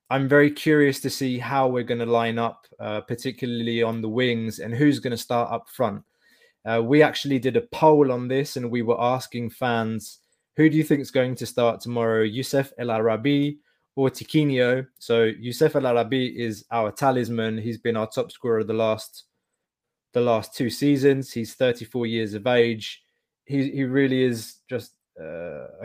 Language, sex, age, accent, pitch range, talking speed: English, male, 20-39, British, 115-135 Hz, 185 wpm